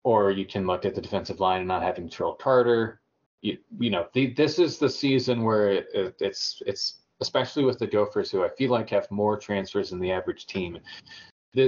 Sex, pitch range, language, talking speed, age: male, 95-120 Hz, English, 215 wpm, 30-49